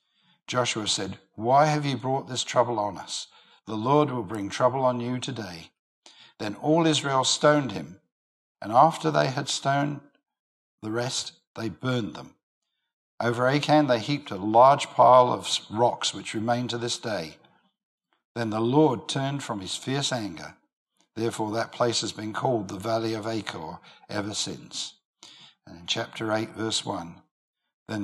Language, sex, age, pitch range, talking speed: English, male, 60-79, 105-135 Hz, 160 wpm